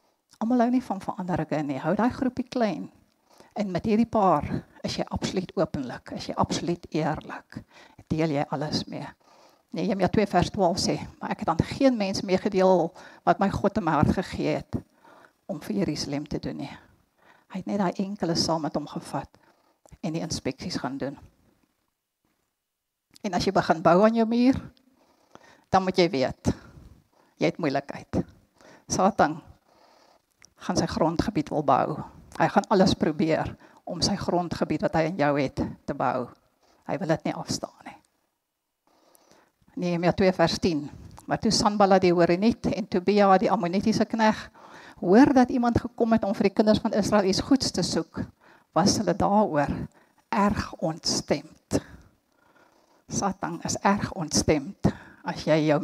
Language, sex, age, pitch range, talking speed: English, female, 50-69, 165-220 Hz, 155 wpm